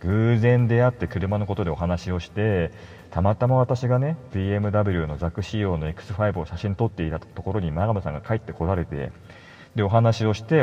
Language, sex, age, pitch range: Japanese, male, 40-59, 85-110 Hz